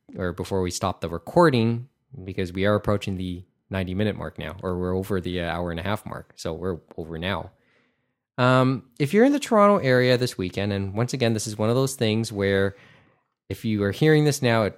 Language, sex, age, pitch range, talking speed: English, male, 20-39, 95-120 Hz, 215 wpm